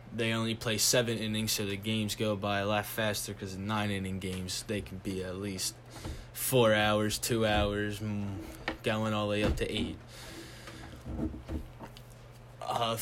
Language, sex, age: English, male, 20-39